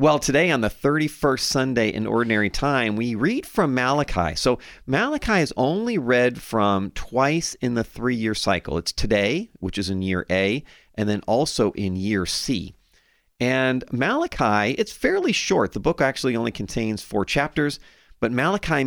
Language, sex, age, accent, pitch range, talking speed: English, male, 40-59, American, 110-165 Hz, 160 wpm